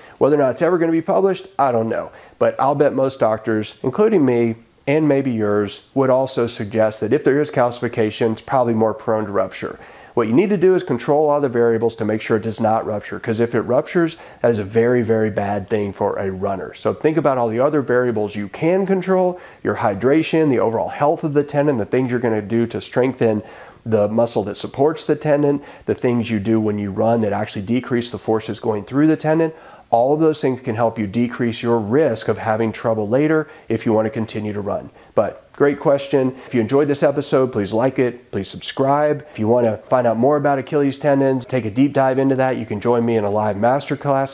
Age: 40-59